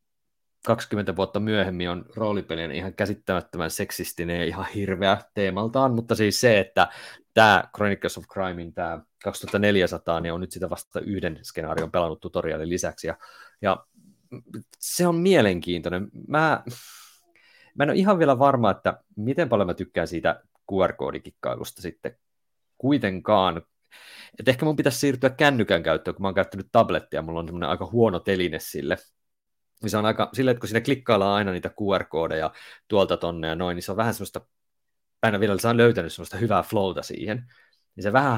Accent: native